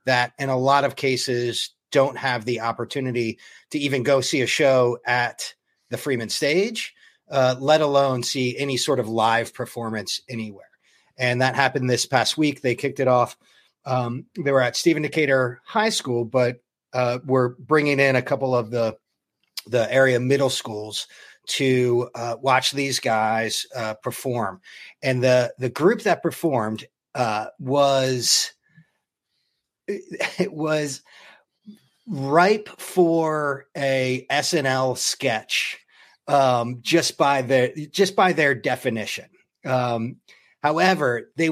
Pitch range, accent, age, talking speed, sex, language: 120-145 Hz, American, 30-49, 135 wpm, male, English